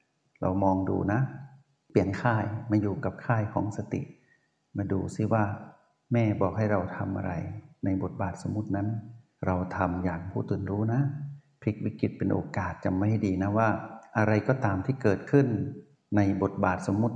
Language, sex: Thai, male